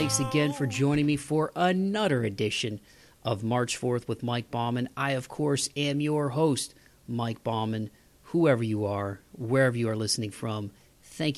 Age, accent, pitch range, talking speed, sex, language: 40-59, American, 110-130 Hz, 165 wpm, male, English